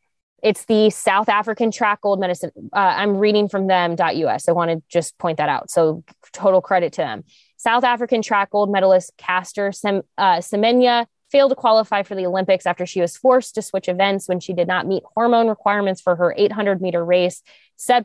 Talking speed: 190 wpm